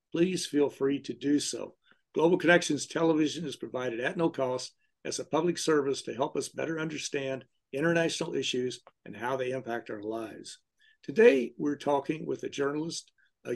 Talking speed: 170 wpm